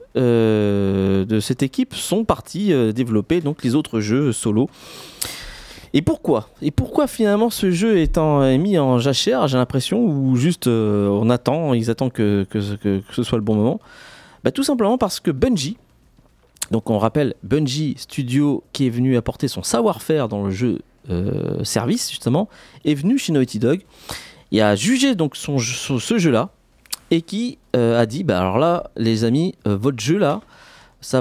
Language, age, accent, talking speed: French, 40-59, French, 165 wpm